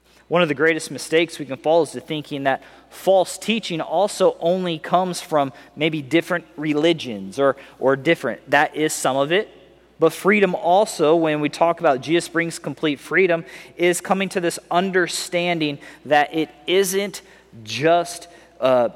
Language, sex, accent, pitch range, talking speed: English, male, American, 145-180 Hz, 155 wpm